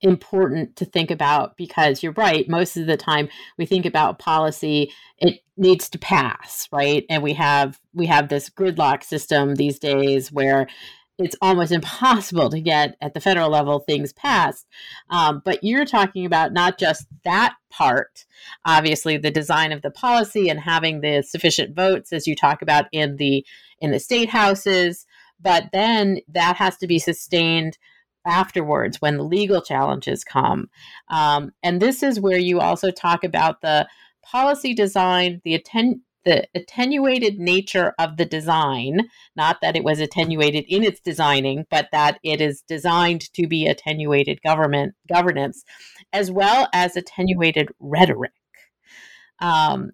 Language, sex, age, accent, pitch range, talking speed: English, female, 30-49, American, 150-190 Hz, 155 wpm